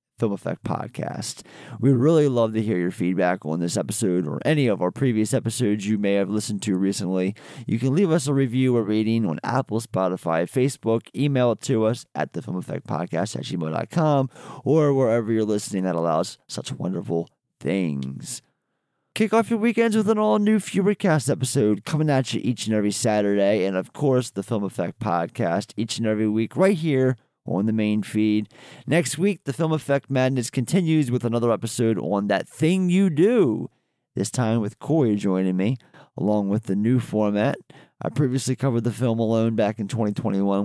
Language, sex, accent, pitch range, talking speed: English, male, American, 100-135 Hz, 185 wpm